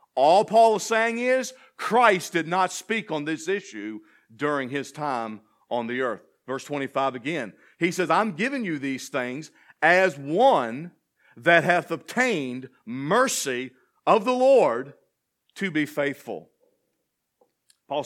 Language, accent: English, American